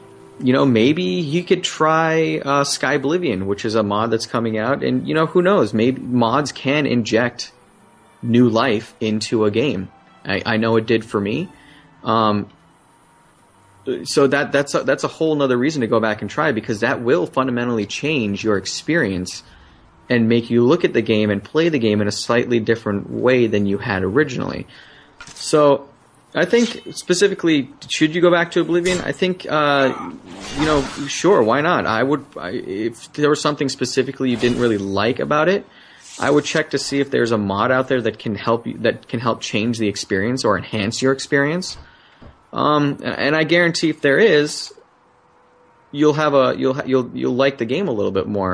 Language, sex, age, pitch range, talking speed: English, male, 30-49, 110-150 Hz, 195 wpm